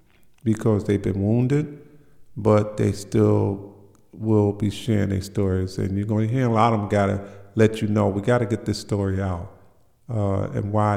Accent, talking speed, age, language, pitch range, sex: American, 180 wpm, 50-69, English, 100-115 Hz, male